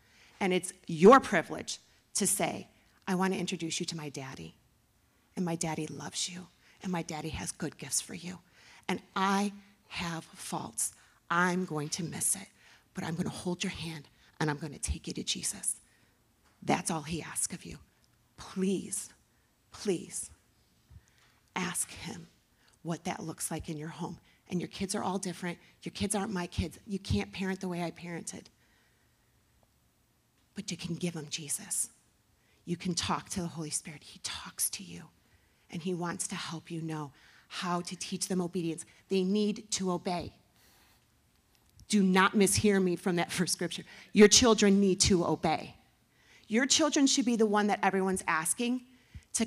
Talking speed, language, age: 170 wpm, English, 40-59